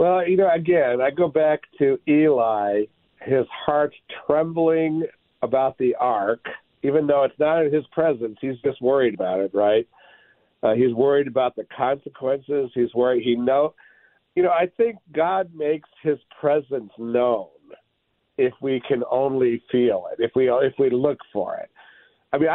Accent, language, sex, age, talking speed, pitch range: American, English, male, 50-69, 165 wpm, 130-165 Hz